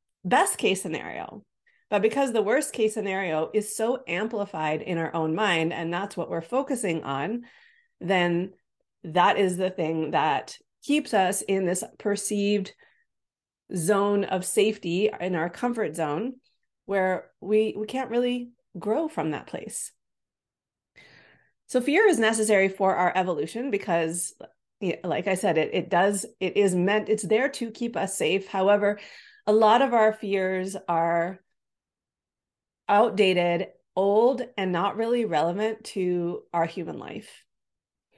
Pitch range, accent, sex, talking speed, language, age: 180-220 Hz, American, female, 140 wpm, English, 30-49